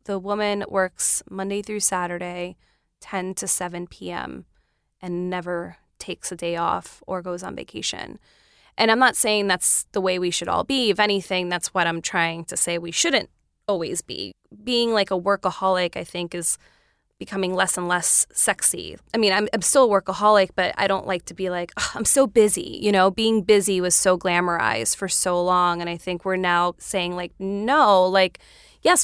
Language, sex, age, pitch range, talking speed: English, female, 20-39, 175-205 Hz, 190 wpm